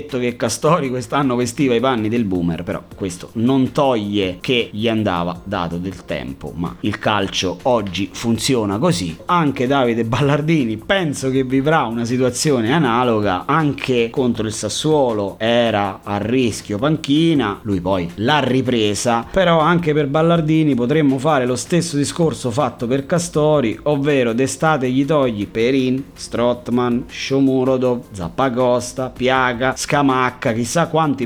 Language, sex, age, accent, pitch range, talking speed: Italian, male, 30-49, native, 110-140 Hz, 130 wpm